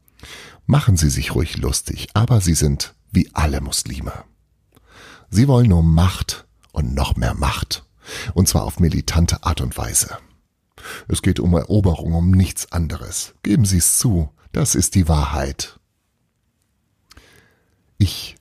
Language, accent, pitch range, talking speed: German, German, 80-110 Hz, 135 wpm